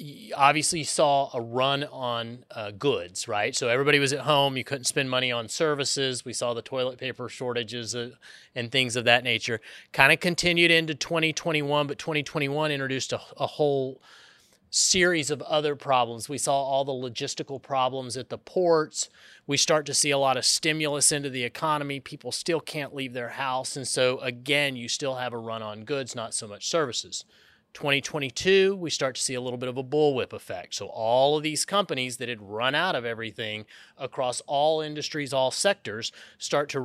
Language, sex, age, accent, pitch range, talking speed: English, male, 30-49, American, 125-150 Hz, 190 wpm